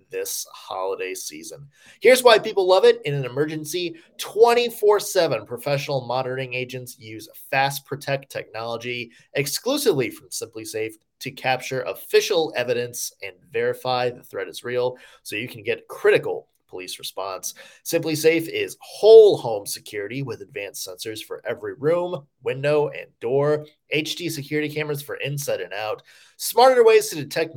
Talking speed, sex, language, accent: 140 wpm, male, English, American